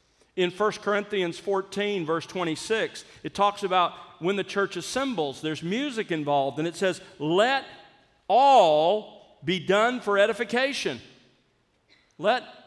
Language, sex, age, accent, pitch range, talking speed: English, male, 50-69, American, 155-220 Hz, 125 wpm